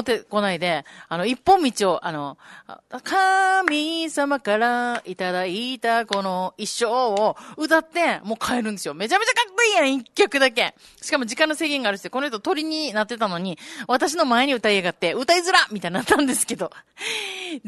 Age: 30-49